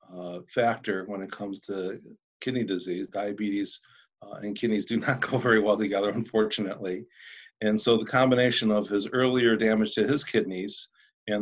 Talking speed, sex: 165 wpm, male